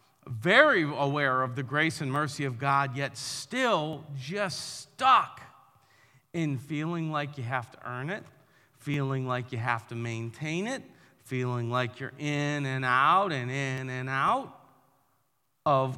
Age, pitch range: 40-59, 120-145 Hz